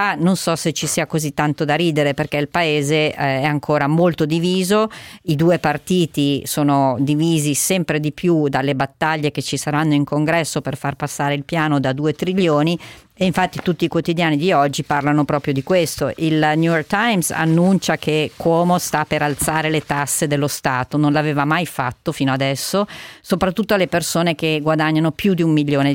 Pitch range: 140-165 Hz